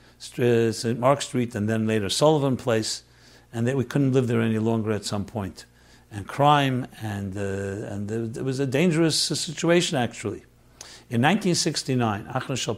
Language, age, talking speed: English, 60-79, 150 wpm